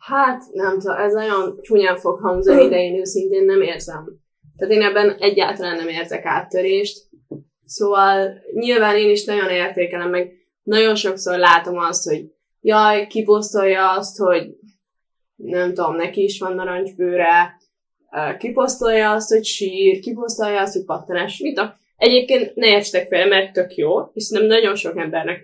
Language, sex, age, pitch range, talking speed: Hungarian, female, 10-29, 180-220 Hz, 140 wpm